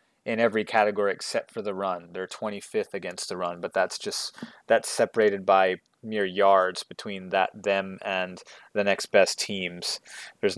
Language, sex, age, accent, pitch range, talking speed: English, male, 30-49, American, 105-125 Hz, 165 wpm